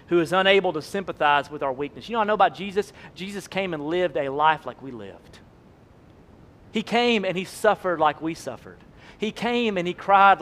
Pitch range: 150-200 Hz